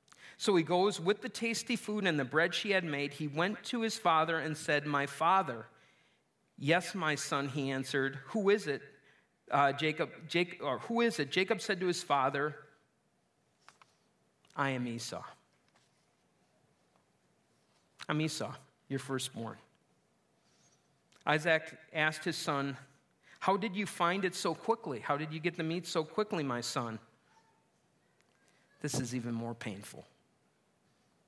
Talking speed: 130 wpm